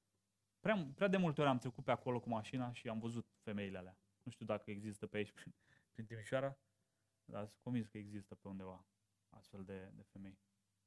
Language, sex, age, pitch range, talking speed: Romanian, male, 20-39, 100-125 Hz, 200 wpm